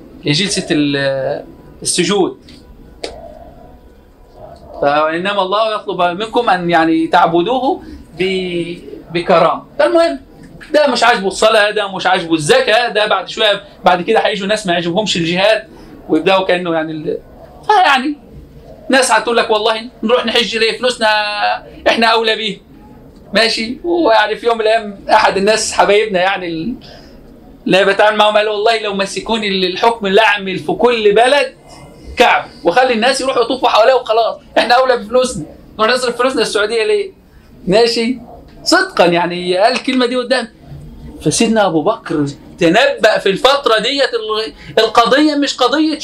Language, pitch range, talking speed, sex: Arabic, 190-255 Hz, 130 wpm, male